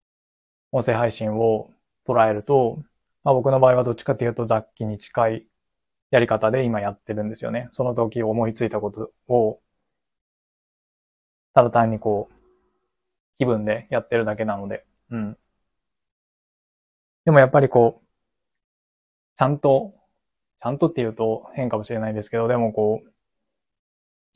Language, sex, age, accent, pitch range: Japanese, male, 20-39, native, 110-130 Hz